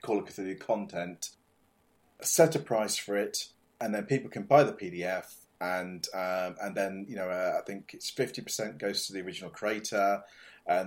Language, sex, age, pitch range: English, male, 30-49, 85-115 Hz